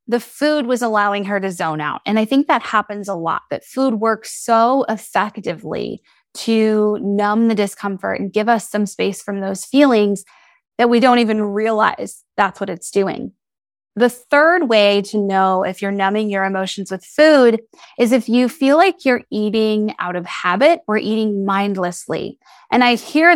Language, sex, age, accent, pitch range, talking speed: English, female, 20-39, American, 195-230 Hz, 175 wpm